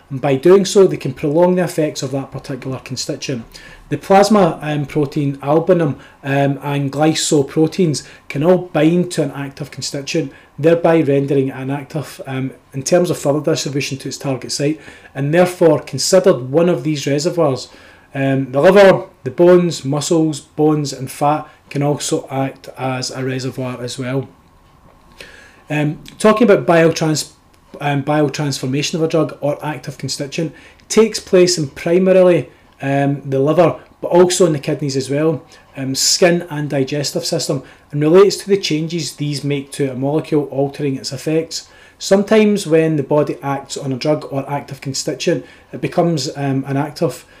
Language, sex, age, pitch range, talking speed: English, male, 30-49, 140-165 Hz, 160 wpm